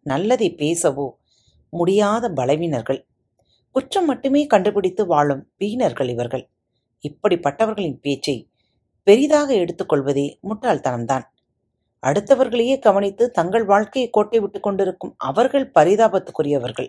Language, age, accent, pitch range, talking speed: Tamil, 40-59, native, 140-220 Hz, 85 wpm